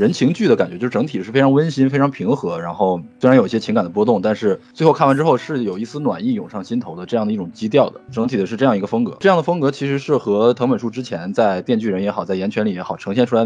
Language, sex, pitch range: Chinese, male, 105-135 Hz